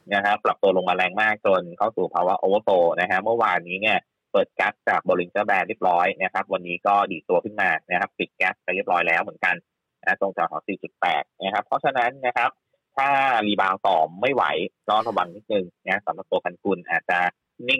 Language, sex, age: Thai, male, 30-49